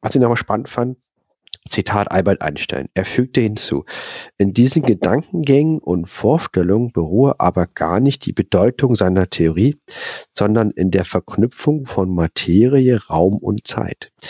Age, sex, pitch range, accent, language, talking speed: 50-69, male, 95-130 Hz, German, German, 140 wpm